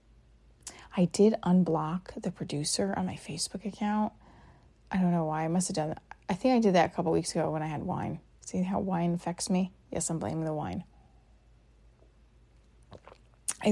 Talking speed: 185 wpm